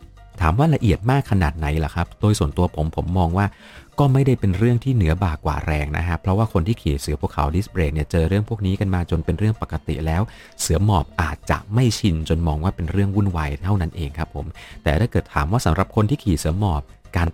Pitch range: 80-105 Hz